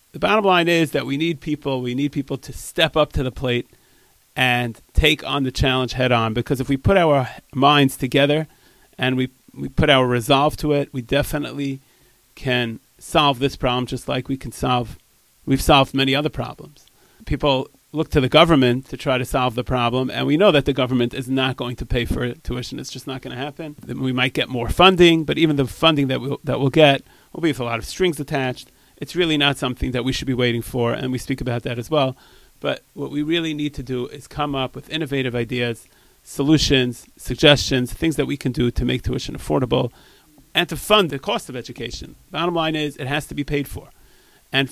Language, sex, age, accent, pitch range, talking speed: English, male, 40-59, American, 125-150 Hz, 225 wpm